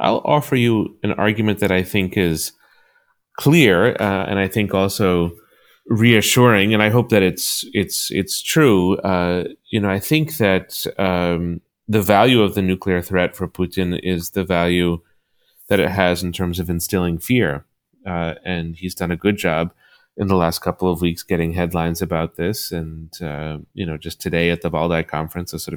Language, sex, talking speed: English, male, 185 wpm